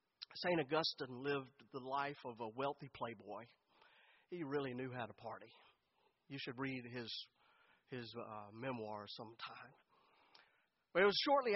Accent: American